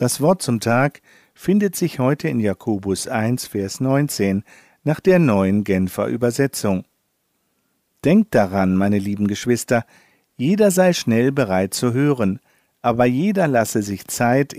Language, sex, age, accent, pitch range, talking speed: German, male, 50-69, German, 105-145 Hz, 135 wpm